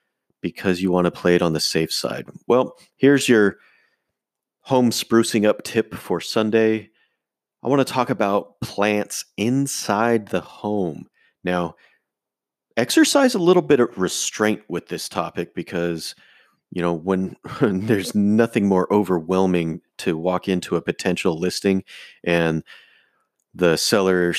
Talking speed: 135 wpm